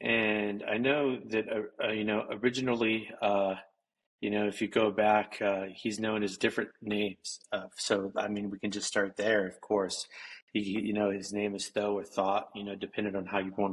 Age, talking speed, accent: 30-49, 220 wpm, American